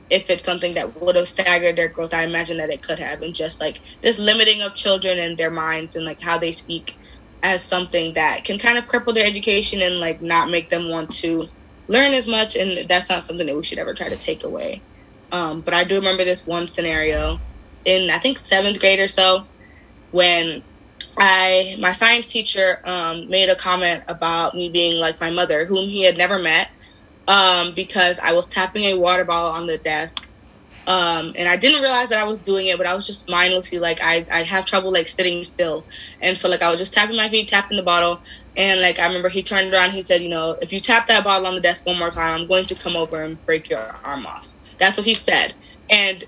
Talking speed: 230 wpm